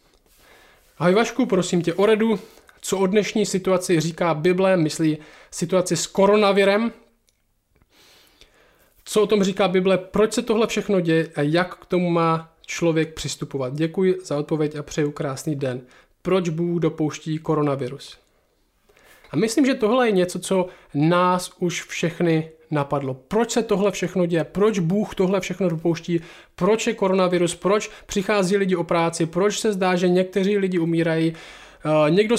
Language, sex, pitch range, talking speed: Czech, male, 160-200 Hz, 150 wpm